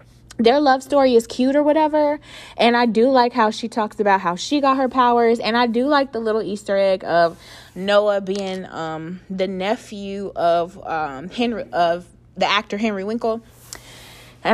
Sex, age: female, 20-39